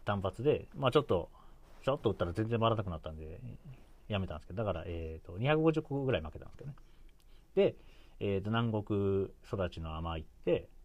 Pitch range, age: 80-125 Hz, 40-59